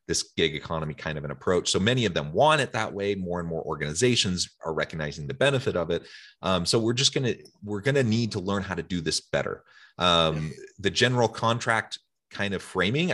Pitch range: 80-110 Hz